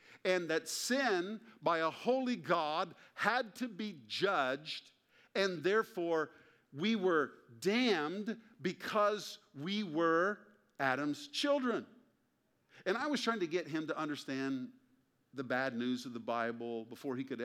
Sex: male